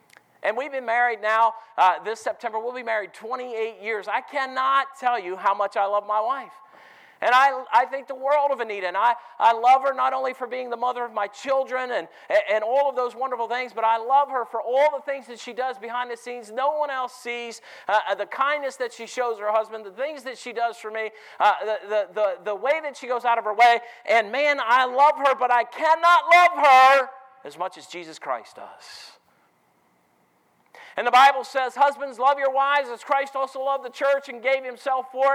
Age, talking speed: 40-59, 225 wpm